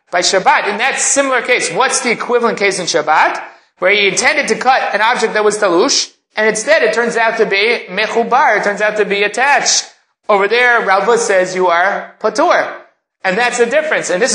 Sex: male